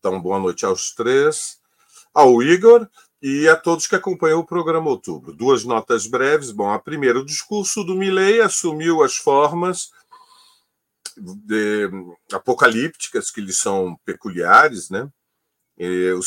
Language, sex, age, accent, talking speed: Portuguese, male, 40-59, Brazilian, 135 wpm